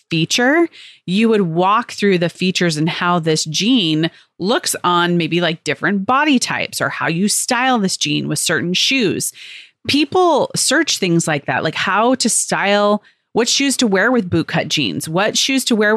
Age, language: 30-49, English